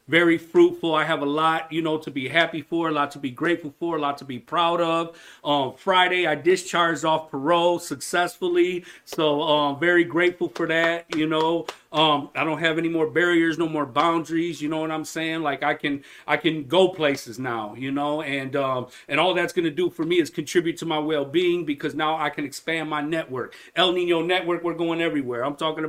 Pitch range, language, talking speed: 145-170 Hz, English, 225 wpm